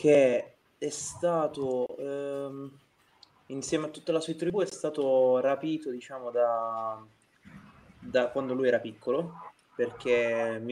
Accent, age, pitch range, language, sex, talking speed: native, 20-39, 115-135 Hz, Italian, male, 125 wpm